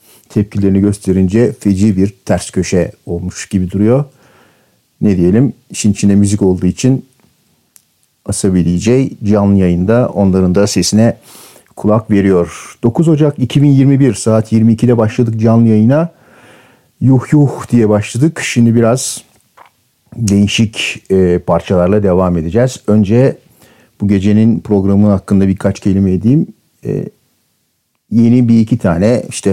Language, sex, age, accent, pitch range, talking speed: Turkish, male, 50-69, native, 95-120 Hz, 115 wpm